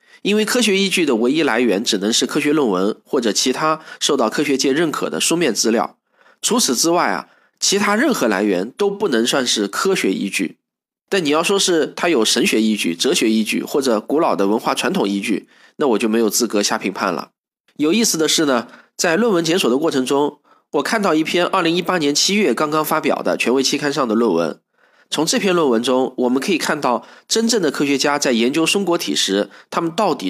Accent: native